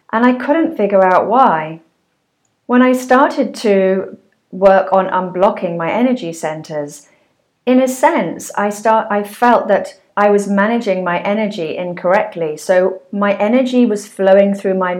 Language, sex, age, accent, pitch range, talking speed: English, female, 40-59, British, 180-230 Hz, 150 wpm